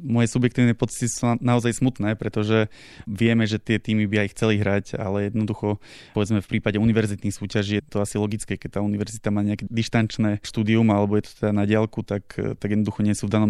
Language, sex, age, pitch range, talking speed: Slovak, male, 20-39, 105-110 Hz, 205 wpm